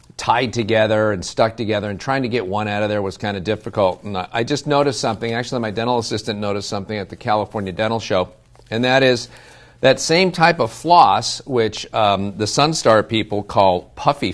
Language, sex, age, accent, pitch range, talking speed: English, male, 50-69, American, 100-120 Hz, 200 wpm